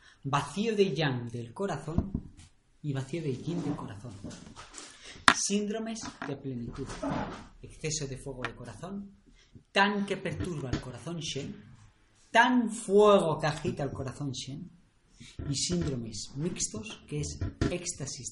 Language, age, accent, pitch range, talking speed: Spanish, 40-59, Spanish, 120-160 Hz, 125 wpm